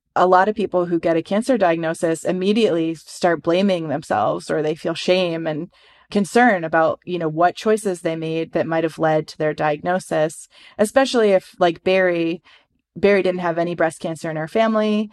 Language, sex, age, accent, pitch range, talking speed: English, female, 30-49, American, 165-190 Hz, 185 wpm